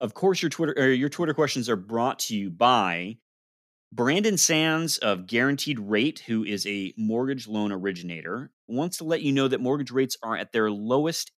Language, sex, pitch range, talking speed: English, male, 100-140 Hz, 190 wpm